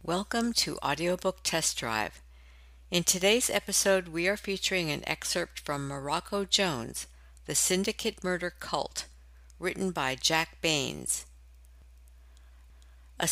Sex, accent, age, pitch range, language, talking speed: female, American, 60-79, 140-195 Hz, English, 115 wpm